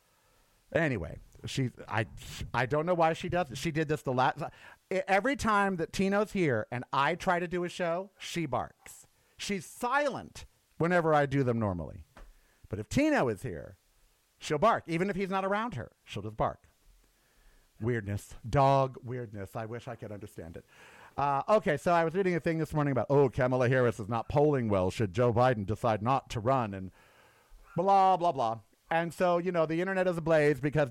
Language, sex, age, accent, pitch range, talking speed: English, male, 50-69, American, 120-165 Hz, 190 wpm